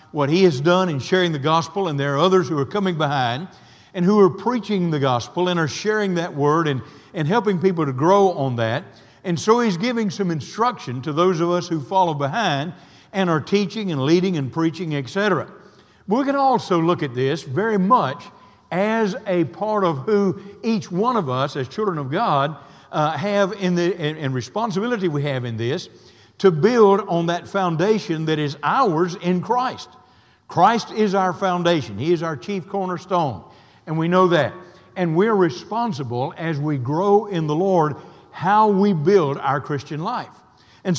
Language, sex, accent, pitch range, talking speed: English, male, American, 150-195 Hz, 185 wpm